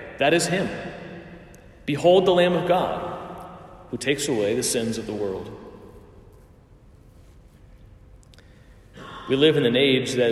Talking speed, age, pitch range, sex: 130 wpm, 40-59, 105-145 Hz, male